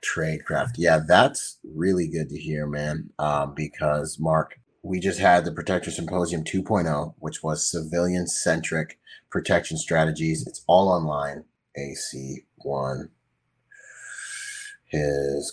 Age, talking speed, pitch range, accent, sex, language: 30-49, 110 wpm, 75-90 Hz, American, male, English